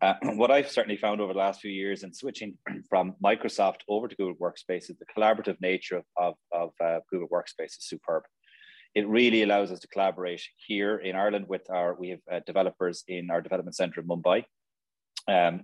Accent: Irish